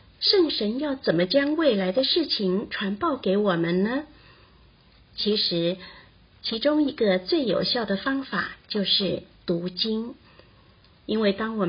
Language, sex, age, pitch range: Chinese, female, 50-69, 180-260 Hz